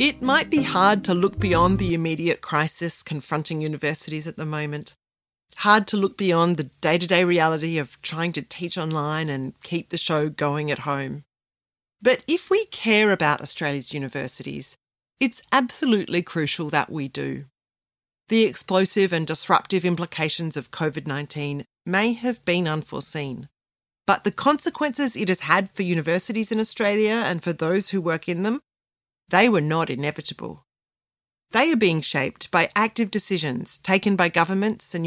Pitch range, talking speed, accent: 150-205 Hz, 155 wpm, Australian